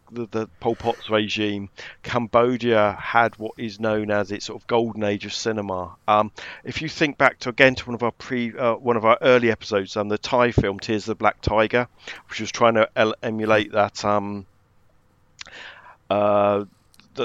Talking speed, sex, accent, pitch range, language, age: 190 wpm, male, British, 100-115 Hz, English, 50-69